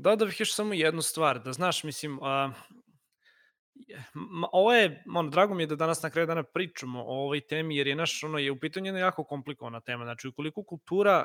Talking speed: 190 wpm